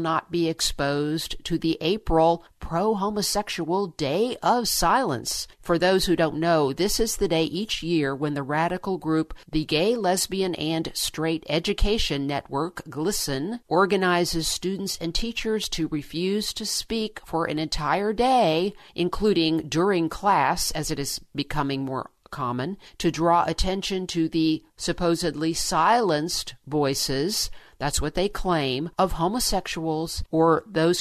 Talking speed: 135 wpm